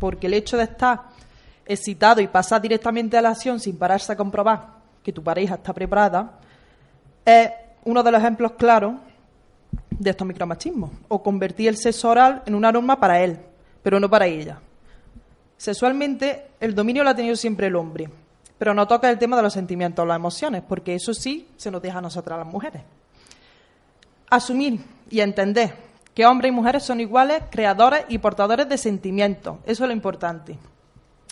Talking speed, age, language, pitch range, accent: 175 wpm, 20-39, Spanish, 195-235 Hz, Spanish